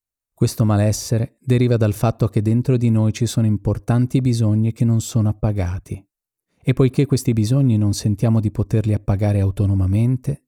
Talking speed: 155 wpm